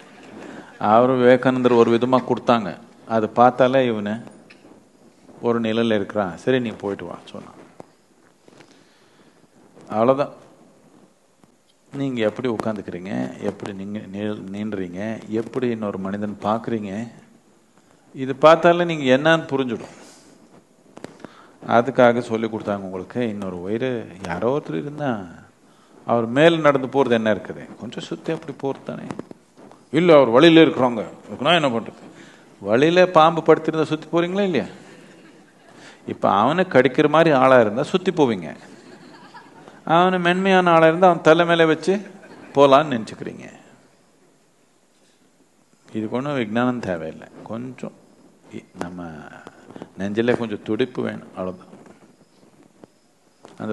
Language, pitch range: Tamil, 110-150 Hz